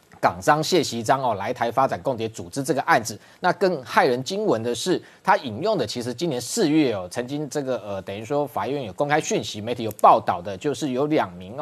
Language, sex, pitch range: Chinese, male, 130-175 Hz